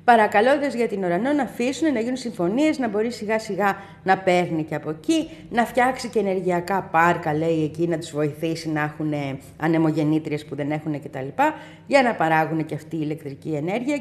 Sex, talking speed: female, 185 wpm